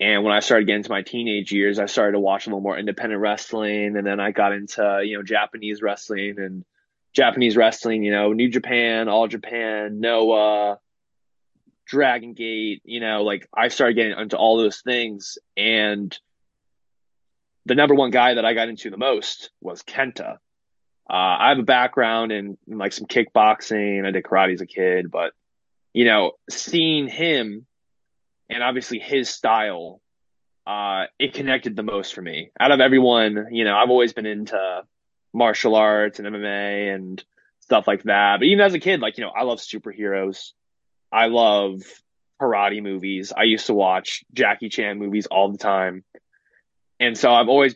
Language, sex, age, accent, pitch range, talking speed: English, male, 20-39, American, 100-115 Hz, 175 wpm